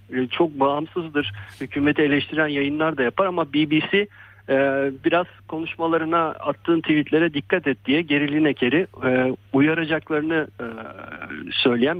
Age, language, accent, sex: 50-69, Turkish, native, male